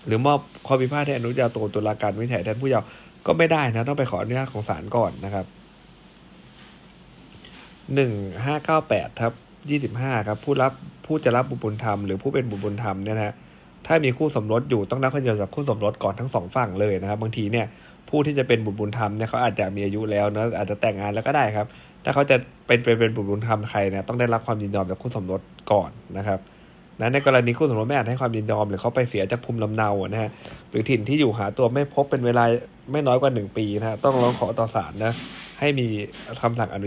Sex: male